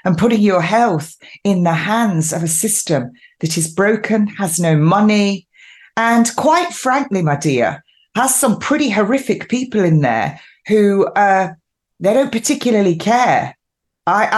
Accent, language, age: British, English, 30-49